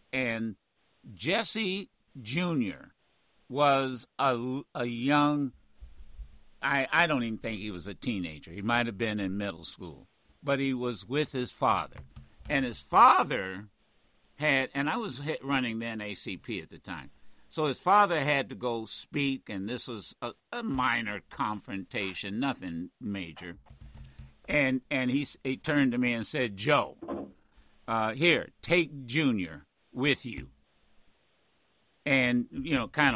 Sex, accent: male, American